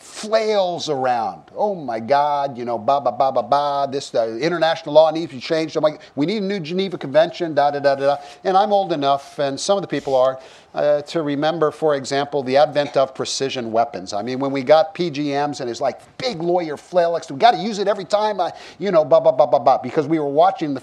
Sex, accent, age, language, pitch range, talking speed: male, American, 50-69, English, 125-165 Hz, 220 wpm